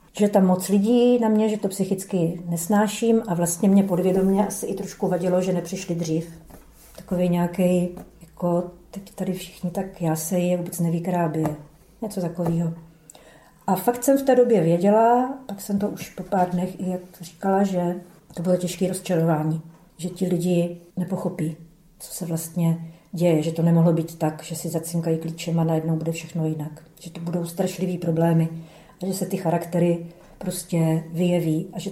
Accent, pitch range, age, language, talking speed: native, 165-195 Hz, 40-59, Czech, 175 wpm